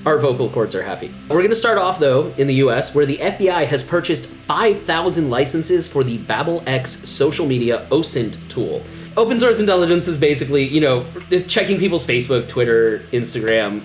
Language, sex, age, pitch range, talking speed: English, male, 30-49, 125-175 Hz, 175 wpm